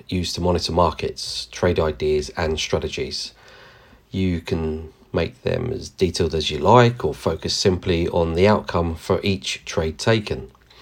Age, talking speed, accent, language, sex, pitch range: 40-59, 150 wpm, British, English, male, 85-125 Hz